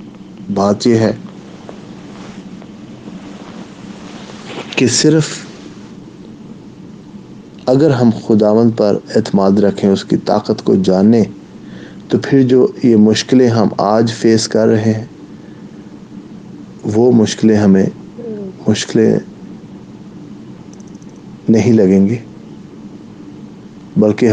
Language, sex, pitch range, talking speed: English, male, 100-120 Hz, 85 wpm